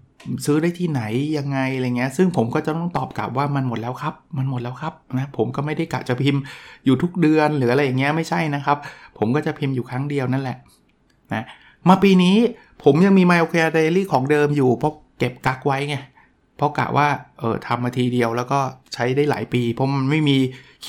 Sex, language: male, Thai